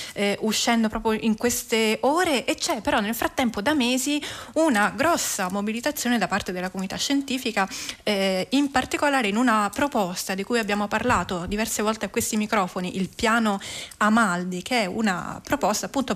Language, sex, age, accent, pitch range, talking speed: Italian, female, 20-39, native, 200-250 Hz, 165 wpm